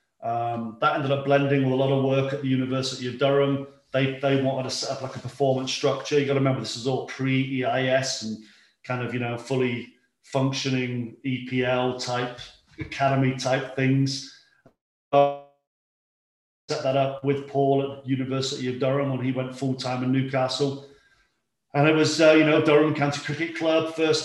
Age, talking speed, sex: 40-59, 180 wpm, male